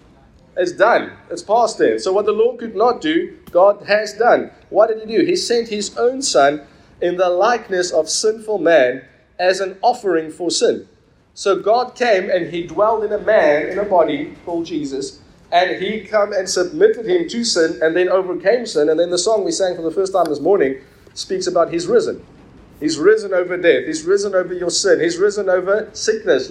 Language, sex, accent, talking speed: English, male, South African, 205 wpm